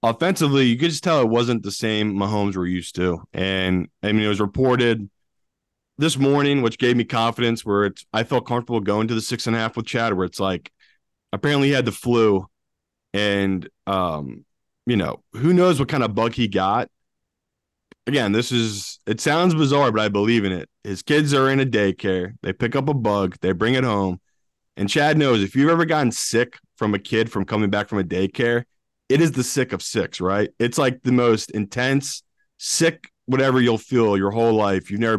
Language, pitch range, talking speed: English, 100-130 Hz, 210 wpm